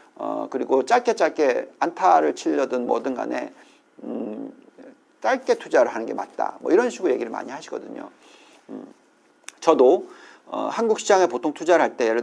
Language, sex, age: Korean, male, 40-59